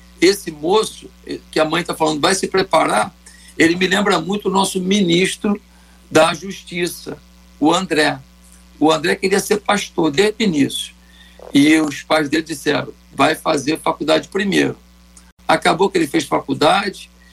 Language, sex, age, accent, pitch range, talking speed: Portuguese, male, 60-79, Brazilian, 125-170 Hz, 150 wpm